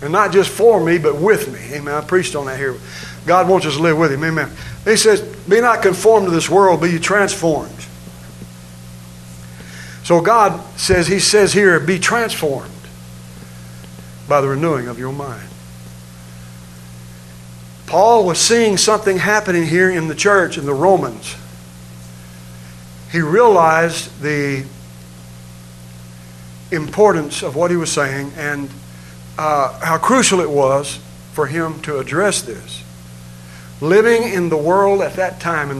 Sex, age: male, 60-79